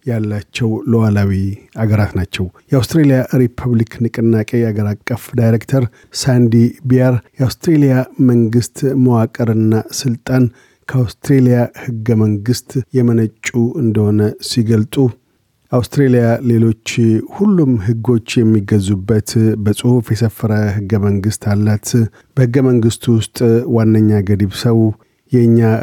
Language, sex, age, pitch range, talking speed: Amharic, male, 50-69, 110-125 Hz, 90 wpm